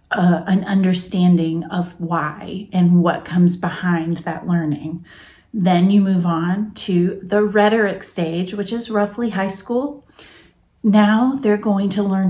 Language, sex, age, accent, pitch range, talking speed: English, female, 30-49, American, 175-210 Hz, 140 wpm